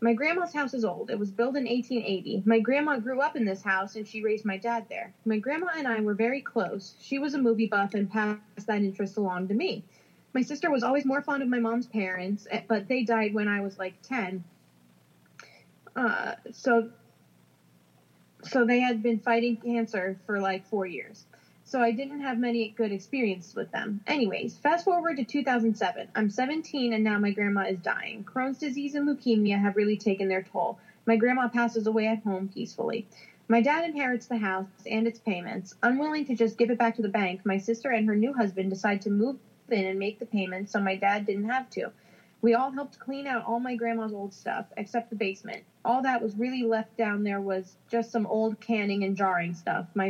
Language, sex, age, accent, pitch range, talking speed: English, female, 20-39, American, 200-245 Hz, 210 wpm